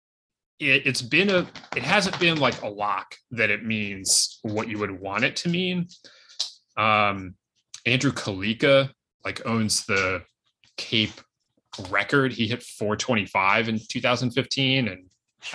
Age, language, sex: 20-39, English, male